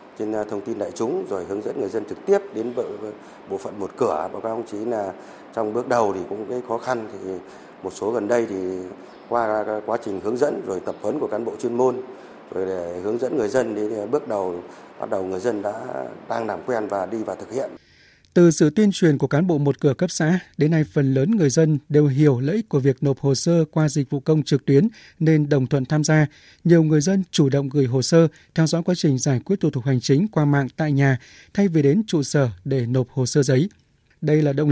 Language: Vietnamese